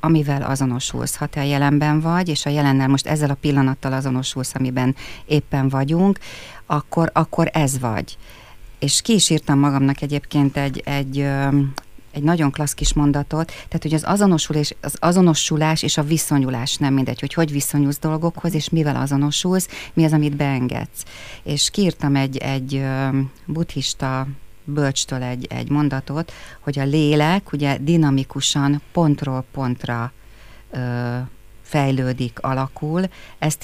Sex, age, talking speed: female, 30-49, 135 wpm